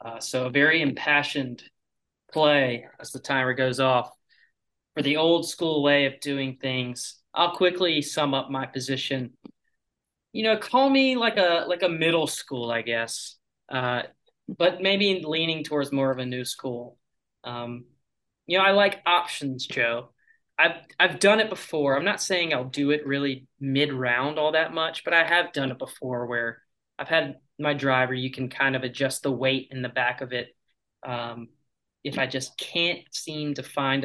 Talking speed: 180 wpm